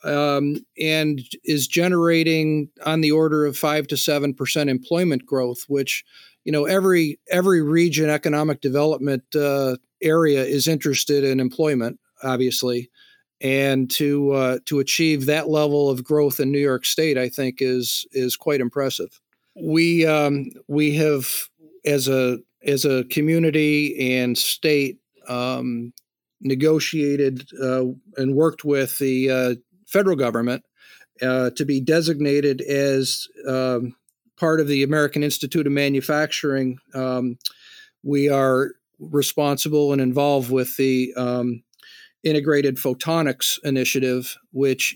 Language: English